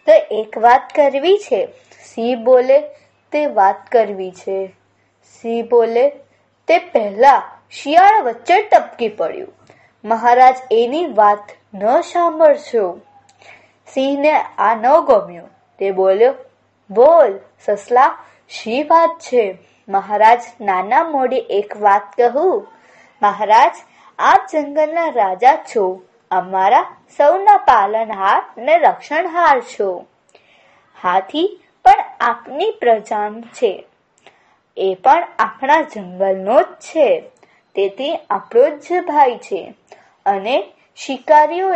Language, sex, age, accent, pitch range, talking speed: Gujarati, female, 20-39, native, 220-335 Hz, 35 wpm